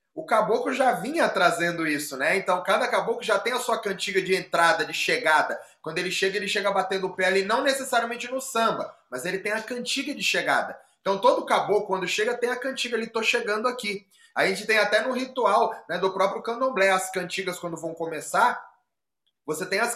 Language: Portuguese